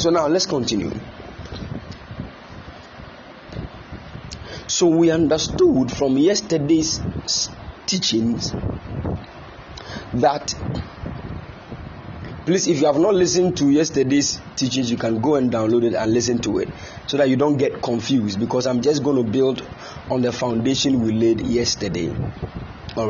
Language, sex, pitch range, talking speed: English, male, 120-155 Hz, 130 wpm